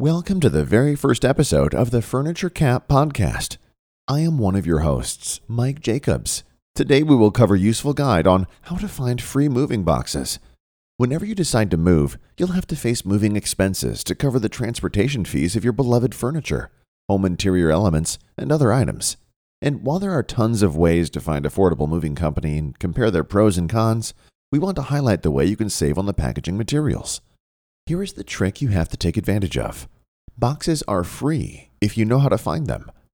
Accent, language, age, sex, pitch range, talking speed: American, English, 40-59, male, 90-135 Hz, 195 wpm